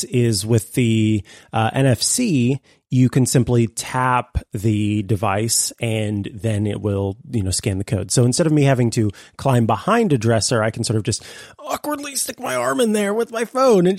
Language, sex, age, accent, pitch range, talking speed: English, male, 30-49, American, 105-130 Hz, 195 wpm